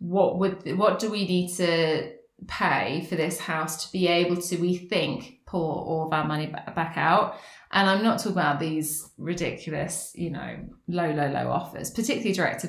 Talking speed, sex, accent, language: 190 wpm, female, British, English